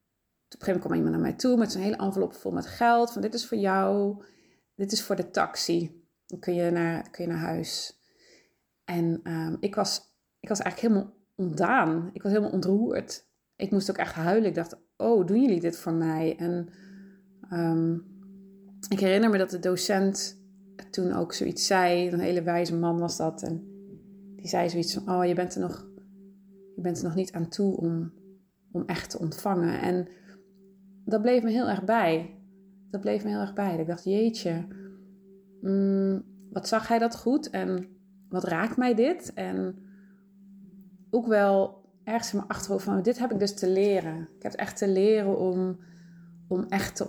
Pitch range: 175-200 Hz